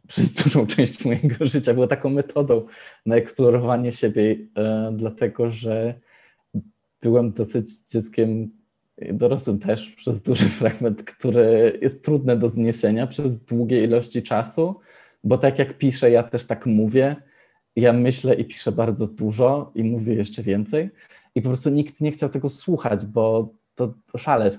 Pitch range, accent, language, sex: 105-125 Hz, Polish, English, male